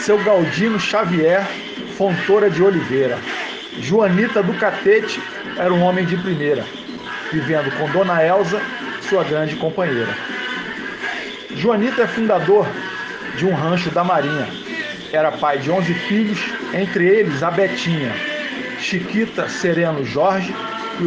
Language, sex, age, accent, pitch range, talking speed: Portuguese, male, 40-59, Brazilian, 160-210 Hz, 120 wpm